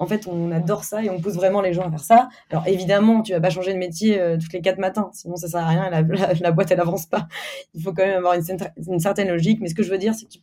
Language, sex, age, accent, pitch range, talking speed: French, female, 20-39, French, 165-200 Hz, 345 wpm